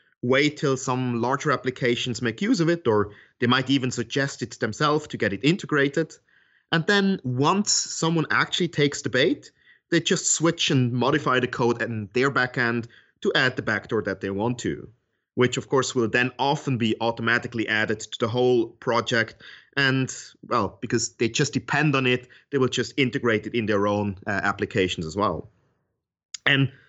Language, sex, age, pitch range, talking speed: English, male, 30-49, 115-145 Hz, 180 wpm